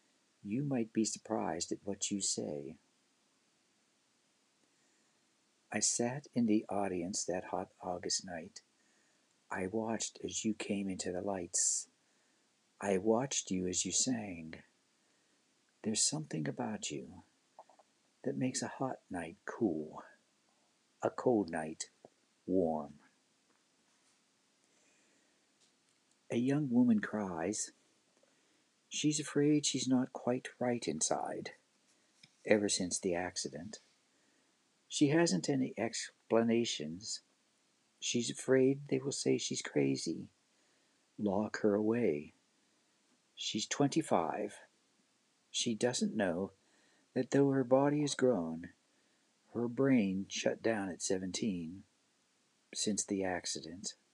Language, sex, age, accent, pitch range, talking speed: English, male, 60-79, American, 95-135 Hz, 105 wpm